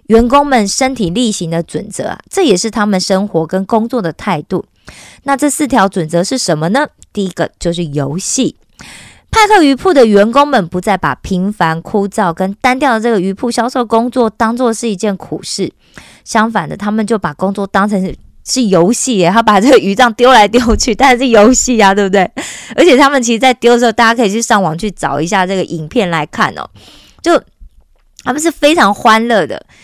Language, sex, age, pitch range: Korean, female, 20-39, 190-255 Hz